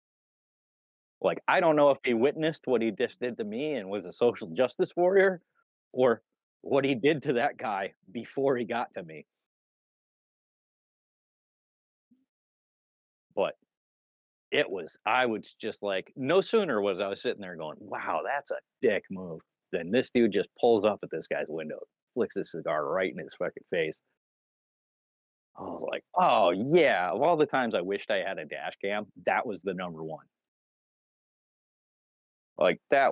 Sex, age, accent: male, 30-49, American